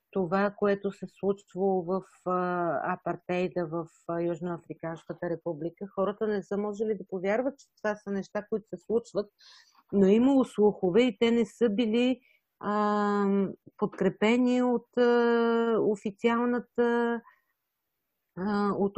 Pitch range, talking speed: 180-215 Hz, 125 wpm